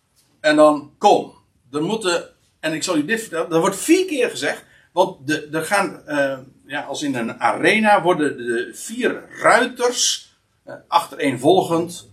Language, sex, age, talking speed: Dutch, male, 60-79, 165 wpm